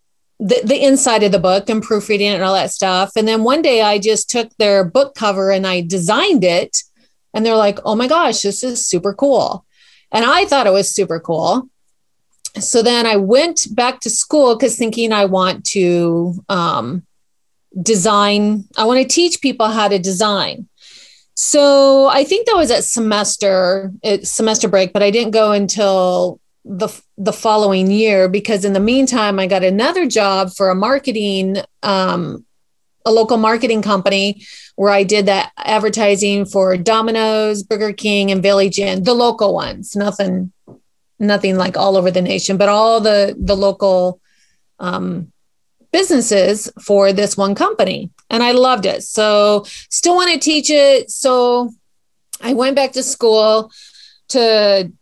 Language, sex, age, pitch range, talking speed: English, female, 30-49, 195-240 Hz, 165 wpm